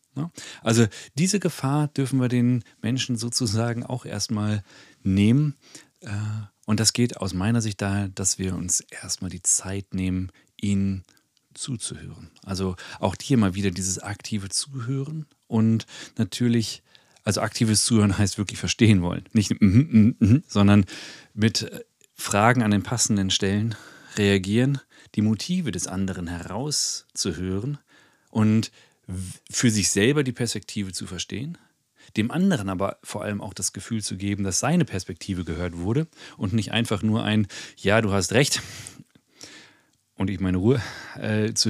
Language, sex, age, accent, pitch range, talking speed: German, male, 40-59, German, 95-120 Hz, 140 wpm